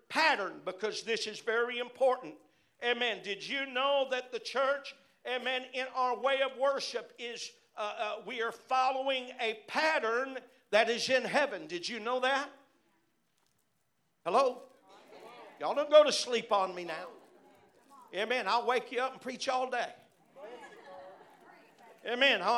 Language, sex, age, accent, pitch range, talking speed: English, male, 50-69, American, 250-305 Hz, 145 wpm